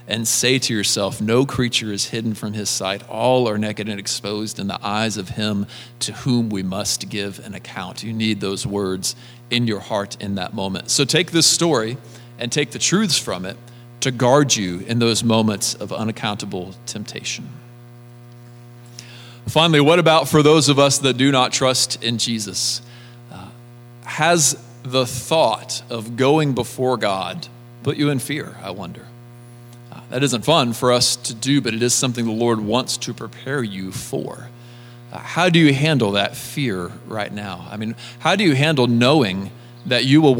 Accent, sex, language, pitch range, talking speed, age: American, male, English, 110-130 Hz, 180 wpm, 40-59